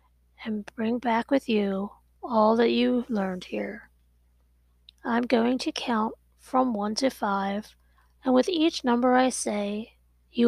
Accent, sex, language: American, female, English